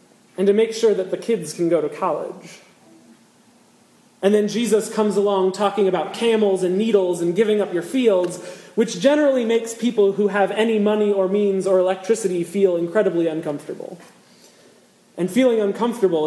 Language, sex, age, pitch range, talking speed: English, male, 30-49, 185-225 Hz, 160 wpm